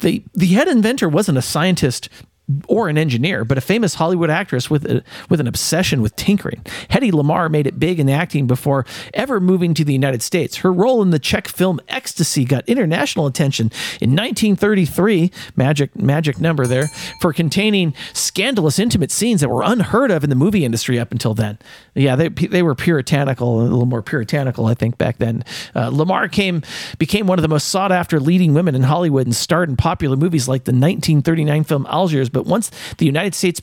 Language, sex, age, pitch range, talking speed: English, male, 40-59, 135-180 Hz, 200 wpm